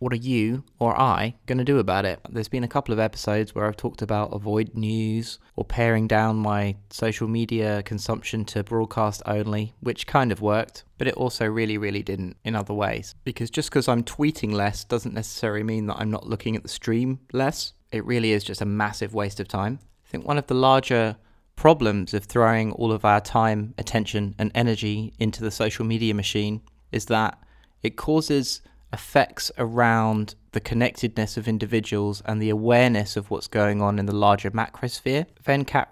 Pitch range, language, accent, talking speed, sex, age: 105-120 Hz, English, British, 190 wpm, male, 20-39